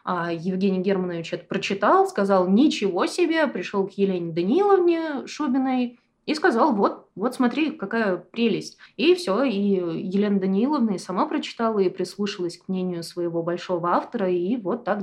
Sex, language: female, Russian